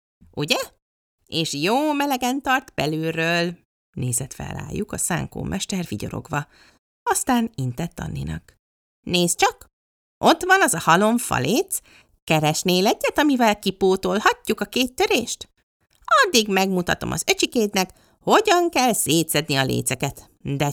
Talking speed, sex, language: 115 wpm, female, Hungarian